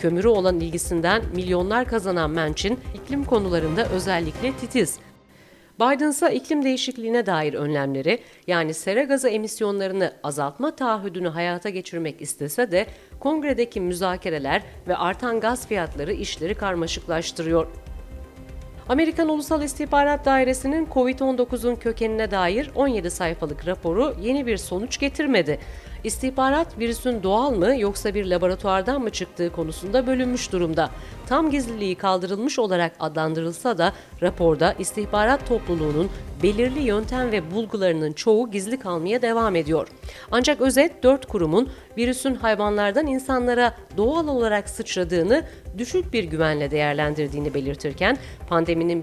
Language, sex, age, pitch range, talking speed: Turkish, female, 40-59, 170-250 Hz, 115 wpm